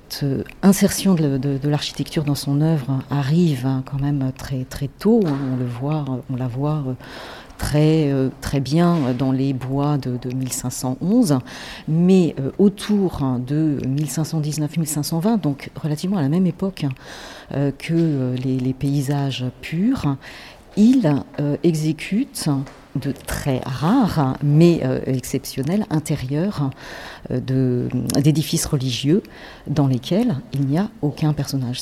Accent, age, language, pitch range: French, 50-69, French, 130-165 Hz